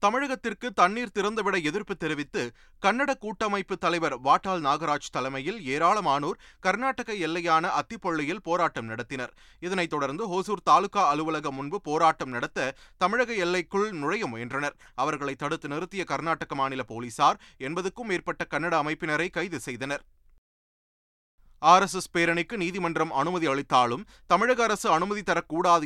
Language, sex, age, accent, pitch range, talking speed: Tamil, male, 30-49, native, 140-185 Hz, 115 wpm